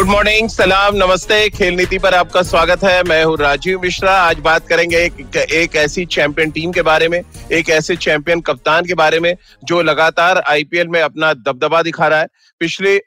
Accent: native